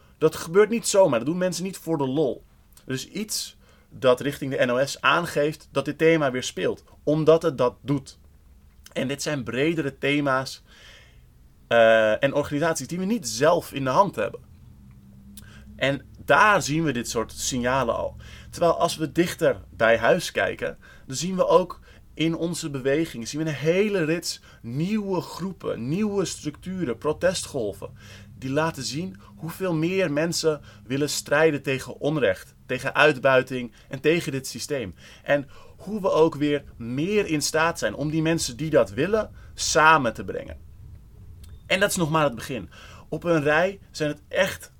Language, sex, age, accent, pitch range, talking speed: Dutch, male, 30-49, Dutch, 115-160 Hz, 160 wpm